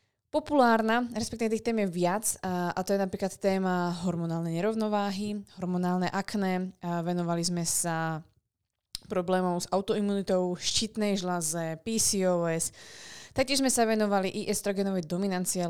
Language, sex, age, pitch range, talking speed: Slovak, female, 20-39, 175-200 Hz, 120 wpm